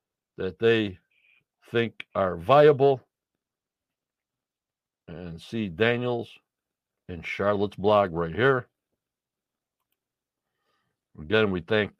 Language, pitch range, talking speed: English, 105-140 Hz, 80 wpm